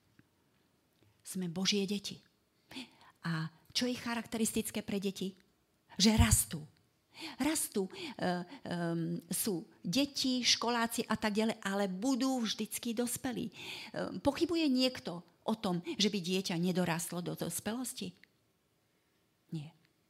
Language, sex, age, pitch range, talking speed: Slovak, female, 40-59, 170-220 Hz, 105 wpm